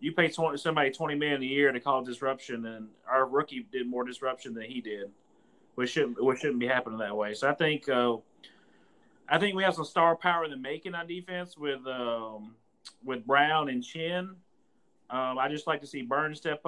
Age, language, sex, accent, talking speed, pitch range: 30-49, English, male, American, 210 wpm, 125-155 Hz